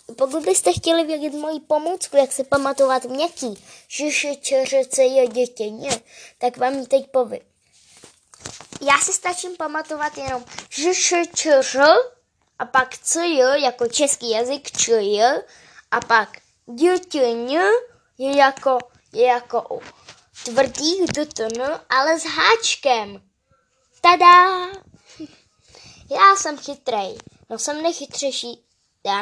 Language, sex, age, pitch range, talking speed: Czech, female, 10-29, 235-305 Hz, 115 wpm